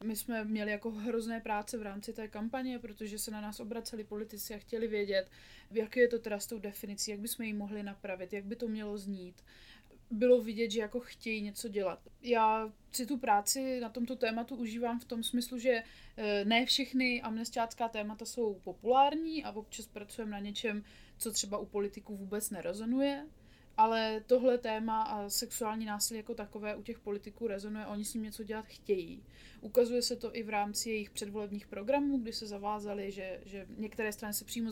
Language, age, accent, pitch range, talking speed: Czech, 20-39, native, 205-235 Hz, 185 wpm